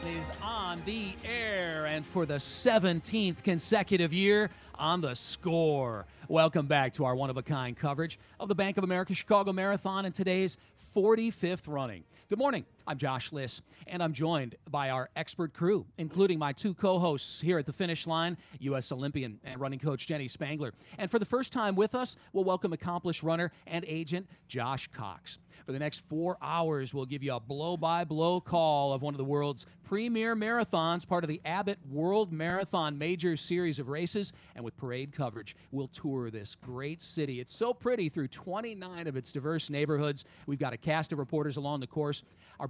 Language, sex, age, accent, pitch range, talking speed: English, male, 40-59, American, 140-180 Hz, 180 wpm